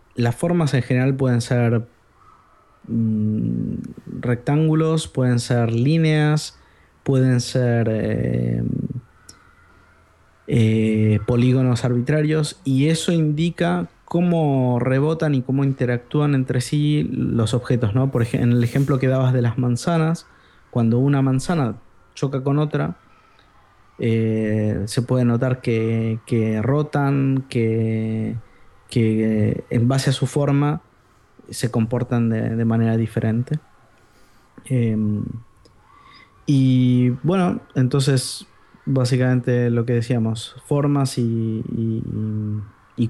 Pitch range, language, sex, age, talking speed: 115-135 Hz, Spanish, male, 20-39, 105 wpm